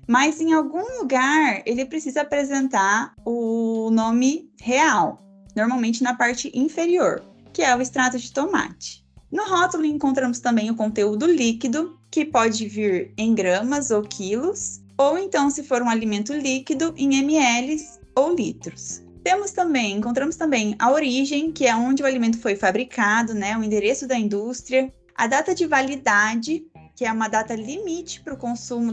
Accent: Brazilian